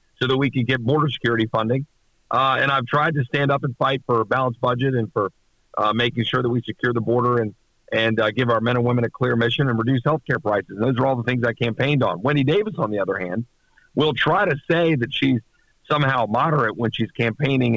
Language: English